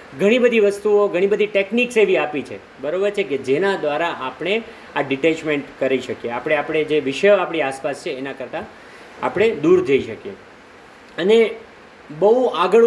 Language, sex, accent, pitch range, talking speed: Gujarati, male, native, 160-220 Hz, 165 wpm